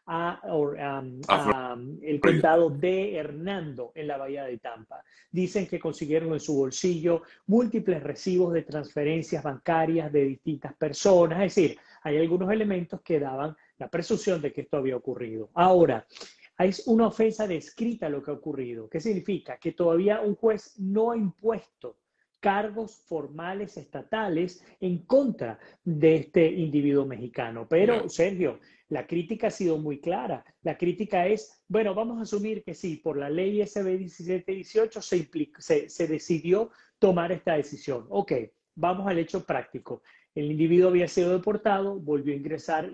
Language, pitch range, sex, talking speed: Spanish, 155-195 Hz, male, 155 wpm